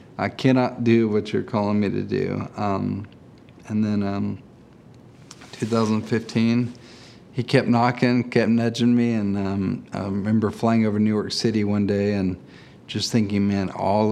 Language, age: English, 40-59